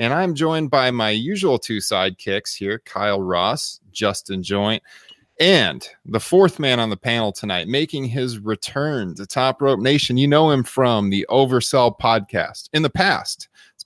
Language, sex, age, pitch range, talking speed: English, male, 30-49, 100-135 Hz, 170 wpm